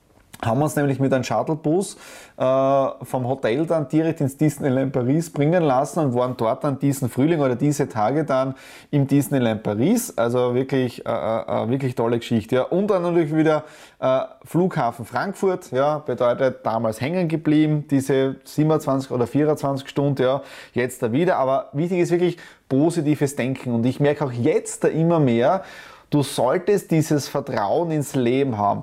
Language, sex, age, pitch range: German, male, 20-39, 135-175 Hz